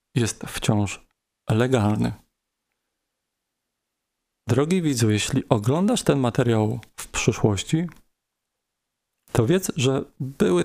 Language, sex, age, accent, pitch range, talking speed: Polish, male, 40-59, native, 115-165 Hz, 85 wpm